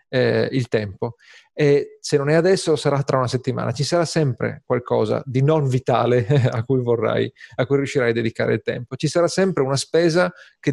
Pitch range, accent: 120-150 Hz, native